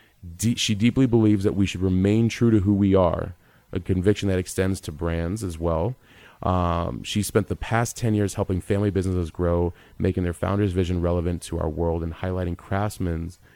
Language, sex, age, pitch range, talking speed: English, male, 30-49, 85-100 Hz, 185 wpm